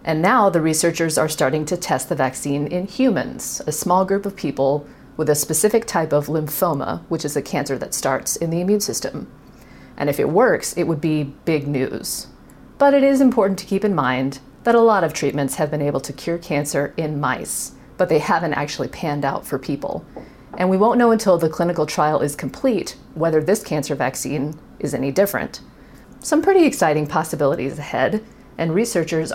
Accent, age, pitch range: American, 40-59, 145-190 Hz